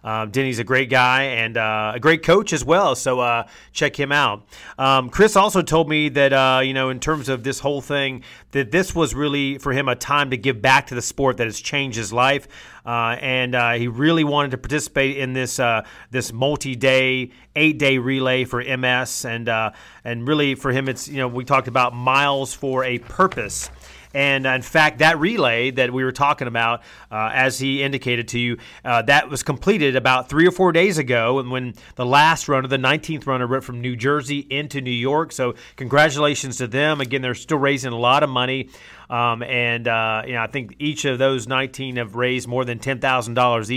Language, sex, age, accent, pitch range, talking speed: English, male, 30-49, American, 125-145 Hz, 210 wpm